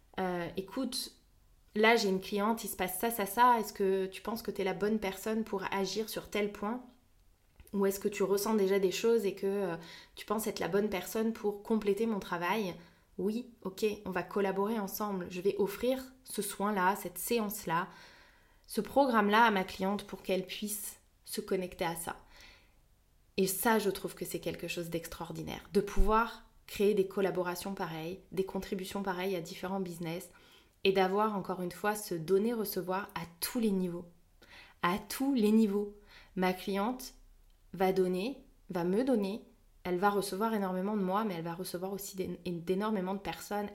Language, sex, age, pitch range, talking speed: English, female, 20-39, 185-215 Hz, 180 wpm